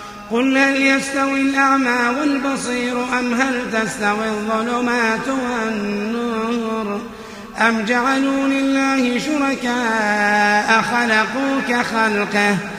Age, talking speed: 30-49, 75 wpm